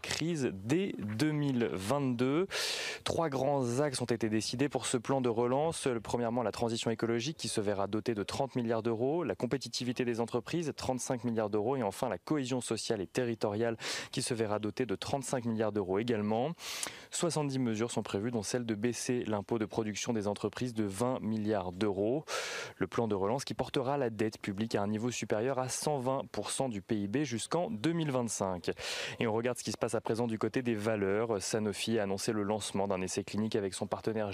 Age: 20-39